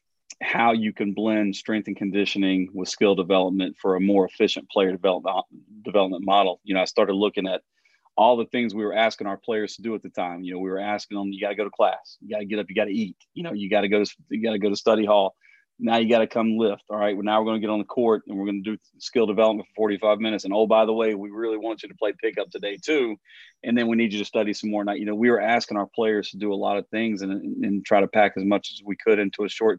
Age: 40-59